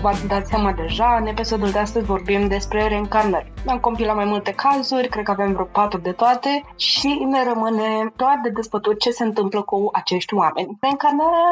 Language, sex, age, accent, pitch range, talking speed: Romanian, female, 20-39, native, 195-230 Hz, 190 wpm